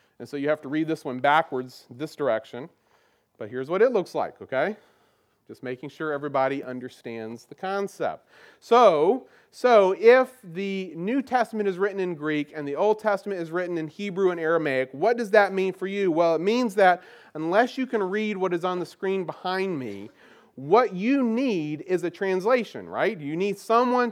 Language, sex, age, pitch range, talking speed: English, male, 30-49, 160-215 Hz, 190 wpm